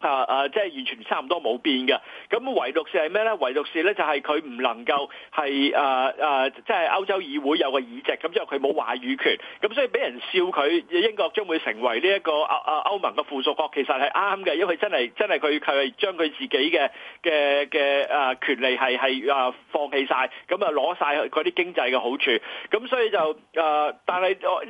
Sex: male